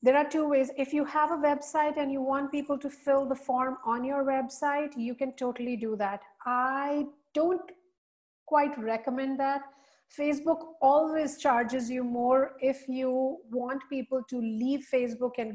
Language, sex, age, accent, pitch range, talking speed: English, female, 40-59, Indian, 230-270 Hz, 165 wpm